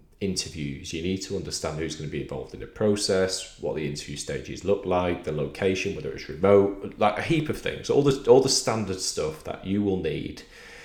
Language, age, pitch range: English, 30-49, 75-100 Hz